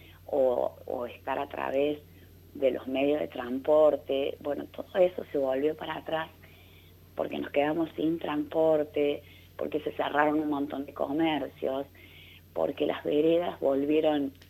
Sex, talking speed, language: female, 135 wpm, Spanish